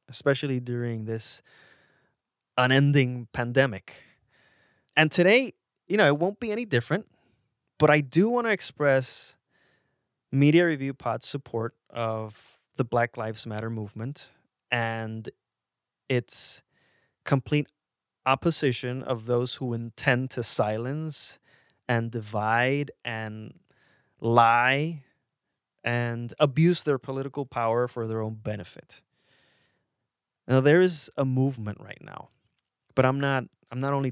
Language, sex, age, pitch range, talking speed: English, male, 20-39, 110-145 Hz, 115 wpm